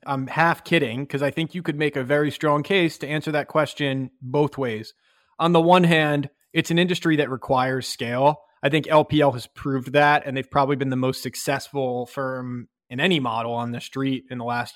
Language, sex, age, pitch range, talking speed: English, male, 20-39, 135-160 Hz, 210 wpm